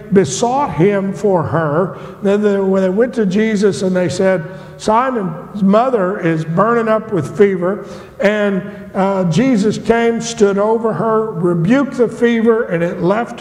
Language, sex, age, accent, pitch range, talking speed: English, male, 50-69, American, 205-280 Hz, 150 wpm